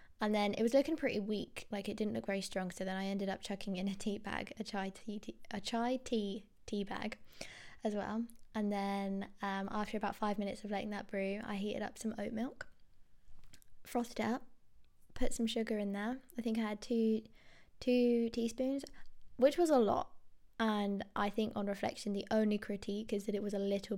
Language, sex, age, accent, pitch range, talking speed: English, female, 20-39, British, 195-230 Hz, 205 wpm